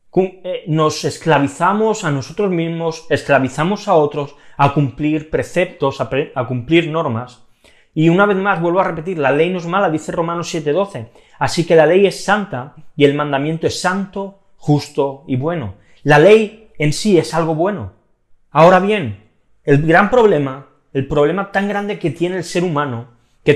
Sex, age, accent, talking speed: male, 30-49, Spanish, 170 wpm